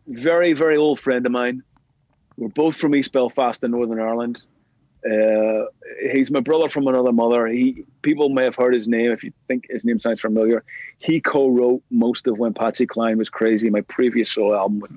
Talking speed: 195 wpm